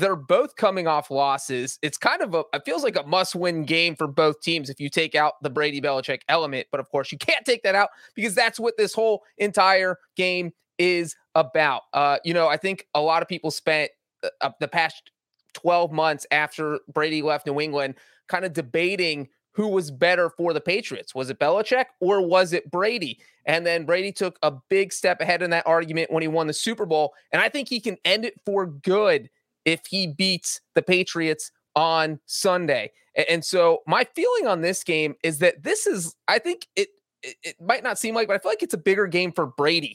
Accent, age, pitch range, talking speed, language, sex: American, 30-49, 155-200 Hz, 215 wpm, English, male